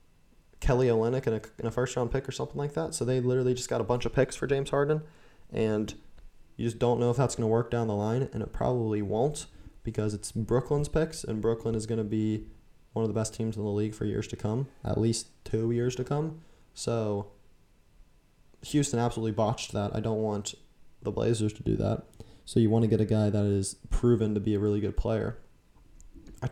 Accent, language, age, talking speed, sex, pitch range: American, English, 20-39, 220 wpm, male, 105-120 Hz